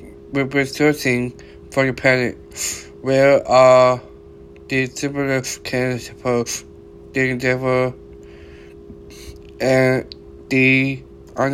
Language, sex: English, male